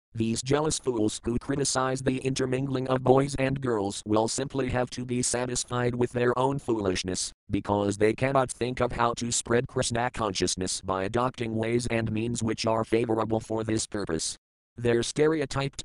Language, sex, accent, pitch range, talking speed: English, male, American, 105-125 Hz, 165 wpm